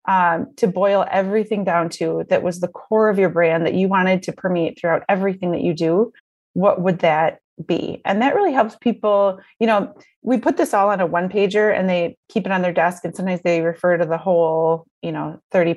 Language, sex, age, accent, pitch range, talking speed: English, female, 30-49, American, 170-210 Hz, 225 wpm